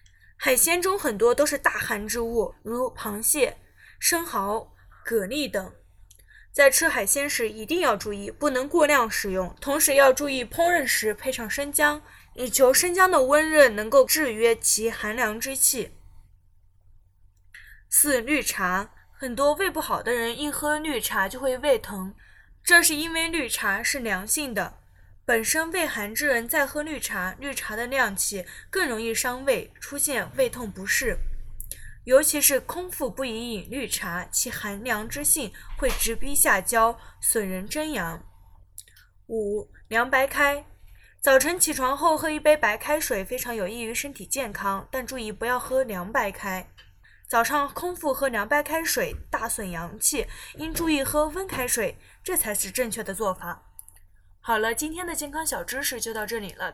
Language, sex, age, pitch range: Chinese, female, 10-29, 205-290 Hz